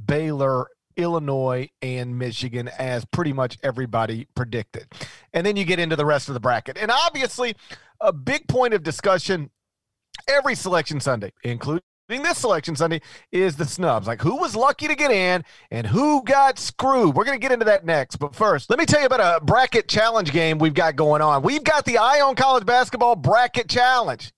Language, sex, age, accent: English, male, 40-59, American